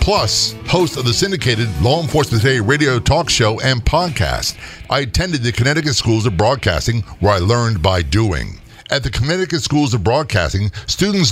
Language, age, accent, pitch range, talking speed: English, 50-69, American, 100-140 Hz, 170 wpm